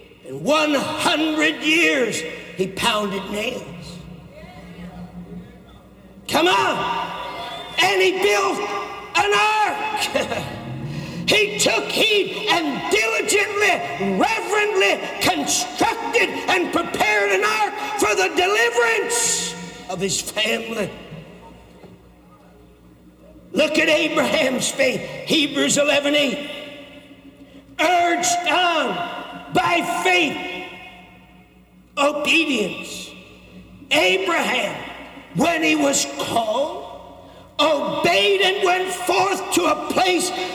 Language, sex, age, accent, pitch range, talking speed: English, male, 60-79, American, 260-395 Hz, 80 wpm